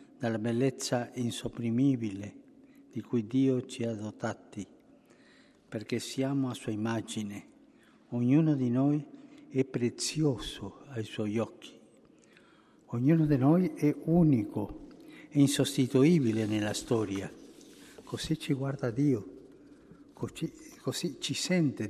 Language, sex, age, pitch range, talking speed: Italian, male, 60-79, 120-145 Hz, 105 wpm